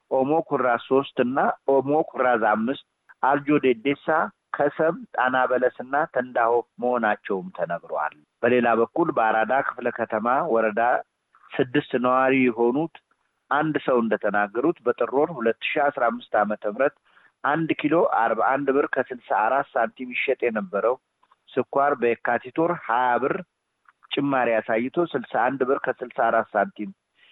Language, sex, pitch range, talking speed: Amharic, male, 115-145 Hz, 95 wpm